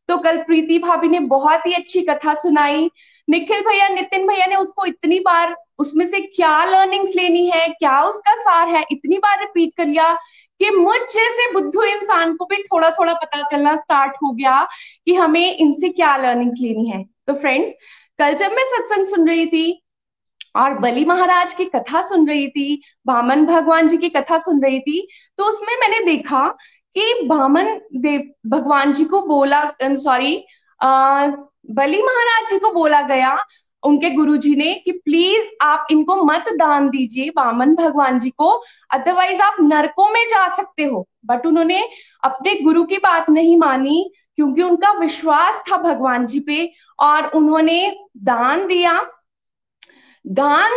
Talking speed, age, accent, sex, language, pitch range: 130 wpm, 20-39, native, female, Hindi, 290-385 Hz